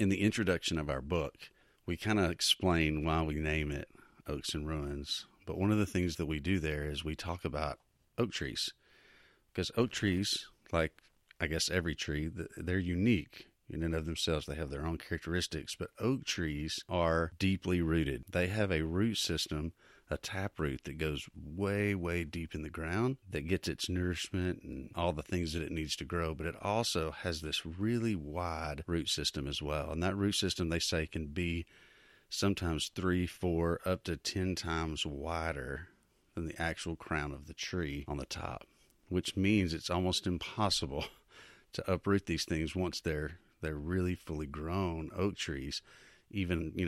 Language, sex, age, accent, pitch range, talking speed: English, male, 40-59, American, 80-90 Hz, 180 wpm